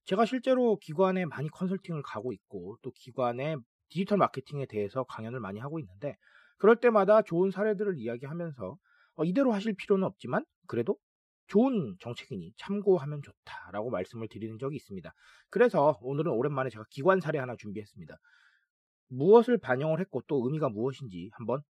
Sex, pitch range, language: male, 130-200 Hz, Korean